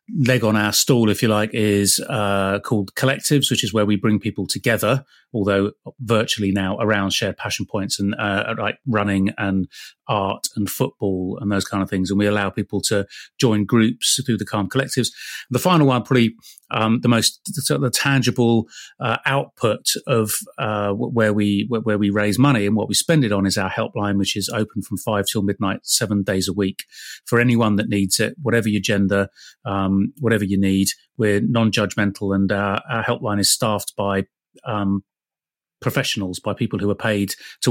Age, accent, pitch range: 30-49, British, 100-125 Hz